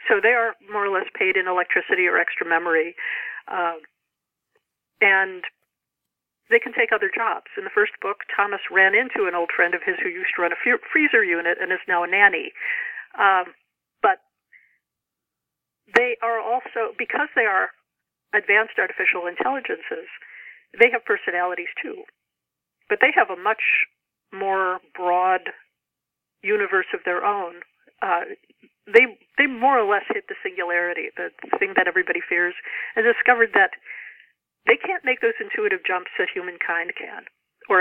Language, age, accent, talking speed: English, 50-69, American, 155 wpm